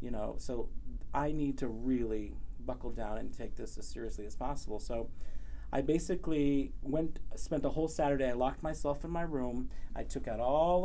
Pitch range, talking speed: 120-145 Hz, 190 wpm